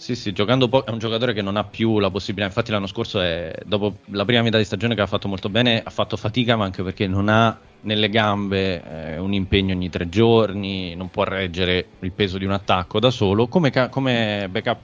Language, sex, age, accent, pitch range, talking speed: Italian, male, 20-39, native, 95-110 Hz, 235 wpm